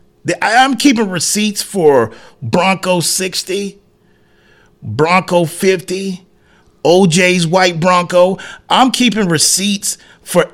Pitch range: 145-215 Hz